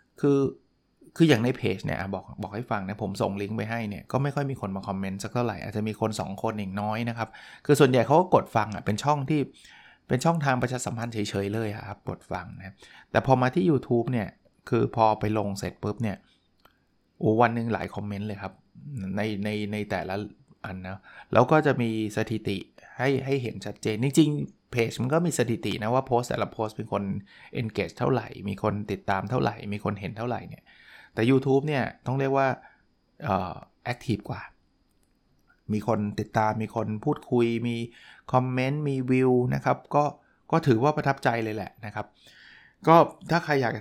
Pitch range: 105-130 Hz